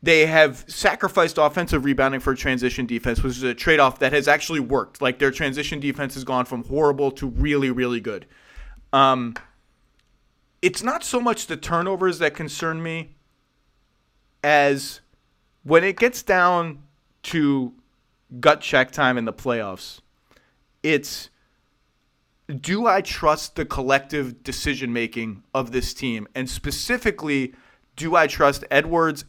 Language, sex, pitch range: English, male, 130-165 Hz